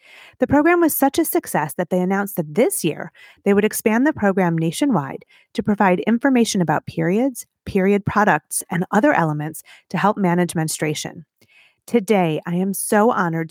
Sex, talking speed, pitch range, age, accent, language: female, 165 wpm, 175-245 Hz, 30-49, American, English